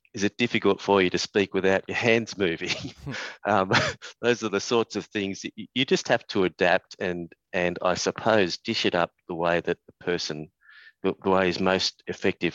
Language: English